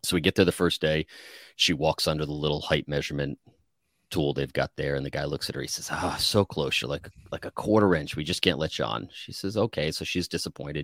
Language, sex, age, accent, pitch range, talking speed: English, male, 30-49, American, 70-85 Hz, 265 wpm